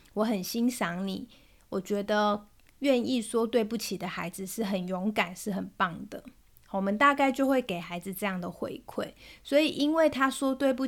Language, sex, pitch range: Chinese, female, 195-260 Hz